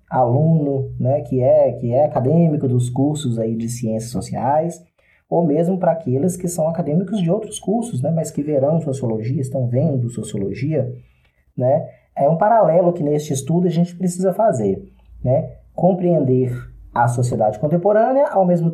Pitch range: 125-170 Hz